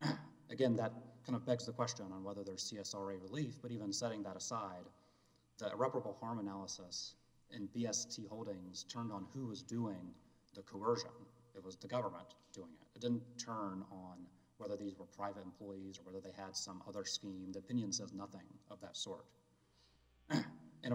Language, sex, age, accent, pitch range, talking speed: English, male, 30-49, American, 95-120 Hz, 175 wpm